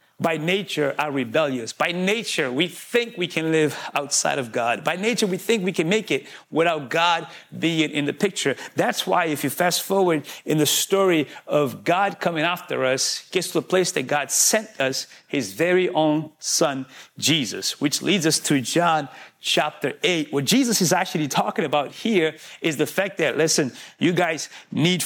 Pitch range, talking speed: 145-185 Hz, 185 wpm